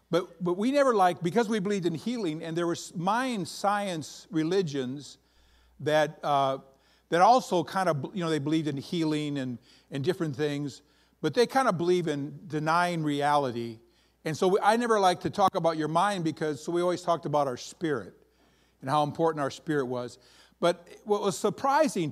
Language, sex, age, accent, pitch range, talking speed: English, male, 50-69, American, 145-185 Hz, 185 wpm